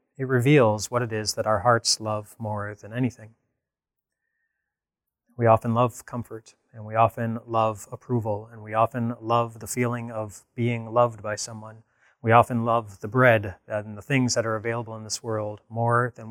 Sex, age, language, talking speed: male, 20-39, English, 175 wpm